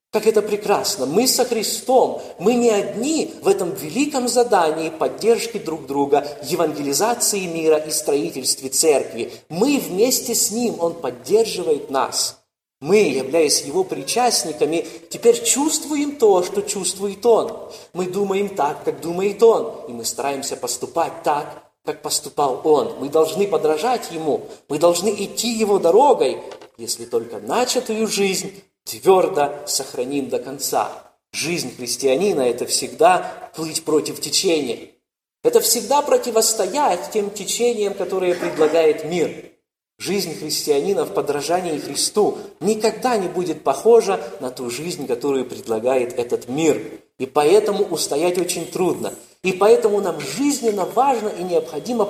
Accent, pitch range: native, 170-250 Hz